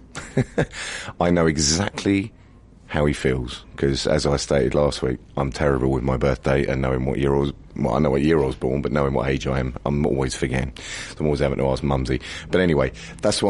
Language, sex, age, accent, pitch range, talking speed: English, male, 30-49, British, 70-95 Hz, 220 wpm